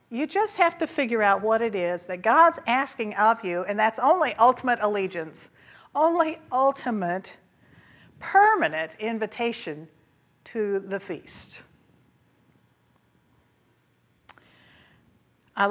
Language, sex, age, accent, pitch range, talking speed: English, female, 50-69, American, 195-265 Hz, 105 wpm